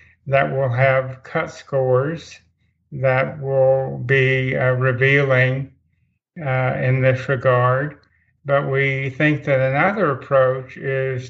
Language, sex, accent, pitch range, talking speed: English, male, American, 125-140 Hz, 110 wpm